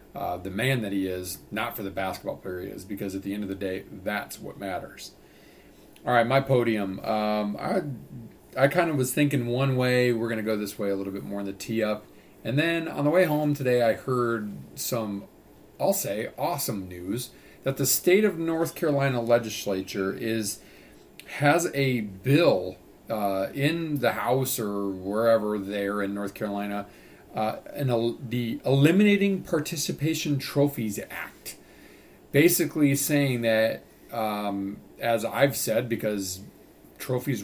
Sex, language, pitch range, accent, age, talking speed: male, English, 100-135 Hz, American, 40-59, 160 wpm